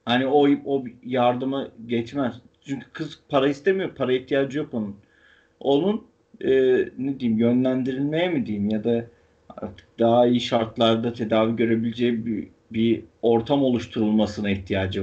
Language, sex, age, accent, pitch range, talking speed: Turkish, male, 40-59, native, 115-160 Hz, 130 wpm